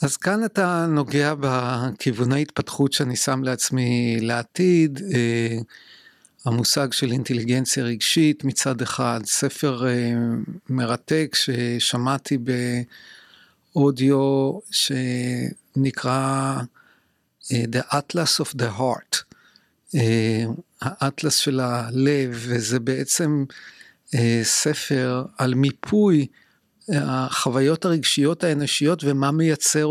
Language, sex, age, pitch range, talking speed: Hebrew, male, 50-69, 125-155 Hz, 80 wpm